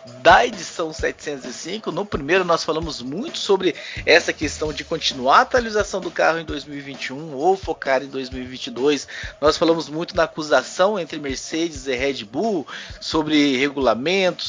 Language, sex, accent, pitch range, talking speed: Portuguese, male, Brazilian, 145-230 Hz, 145 wpm